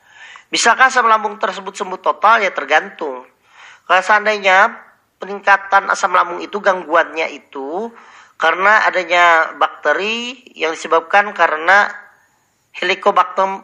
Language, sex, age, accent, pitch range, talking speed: Indonesian, male, 40-59, native, 150-200 Hz, 100 wpm